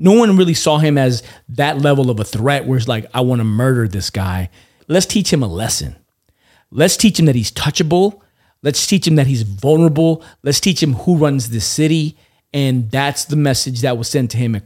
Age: 40-59